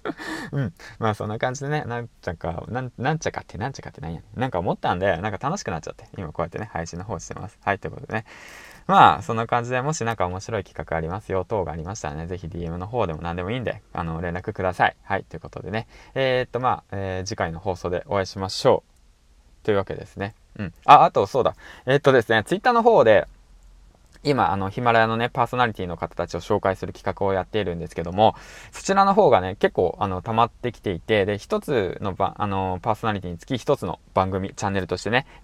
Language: Japanese